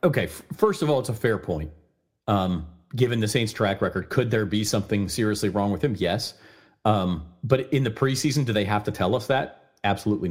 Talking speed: 210 wpm